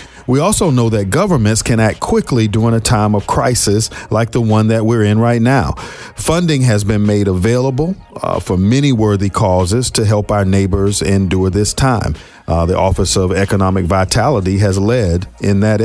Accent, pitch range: American, 95-120 Hz